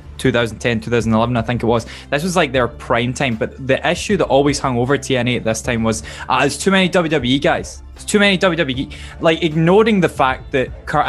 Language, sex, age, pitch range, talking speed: English, male, 10-29, 120-150 Hz, 215 wpm